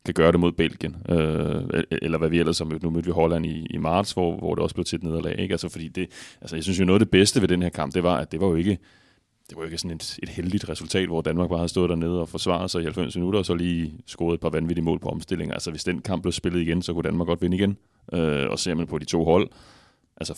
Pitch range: 80-90 Hz